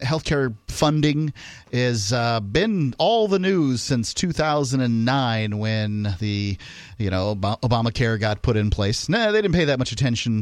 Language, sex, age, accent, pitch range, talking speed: English, male, 40-59, American, 110-145 Hz, 145 wpm